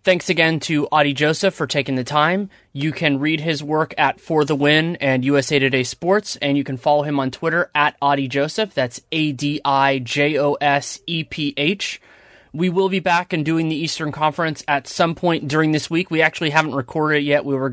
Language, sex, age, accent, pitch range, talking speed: English, male, 20-39, American, 140-165 Hz, 195 wpm